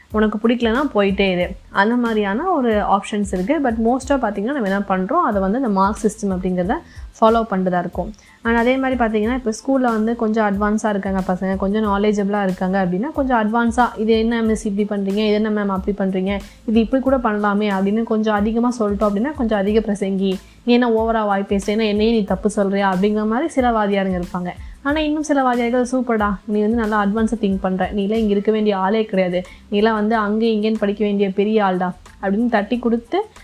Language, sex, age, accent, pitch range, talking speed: Tamil, female, 20-39, native, 195-235 Hz, 185 wpm